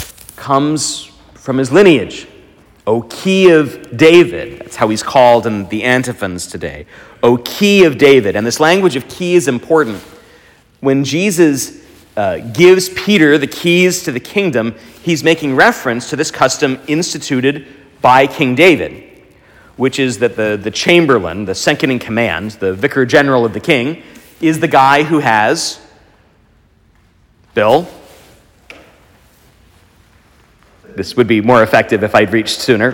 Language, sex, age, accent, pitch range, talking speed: English, male, 40-59, American, 120-160 Hz, 145 wpm